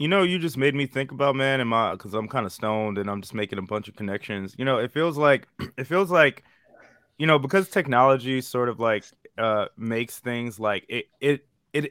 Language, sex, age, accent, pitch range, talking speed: English, male, 20-39, American, 115-140 Hz, 220 wpm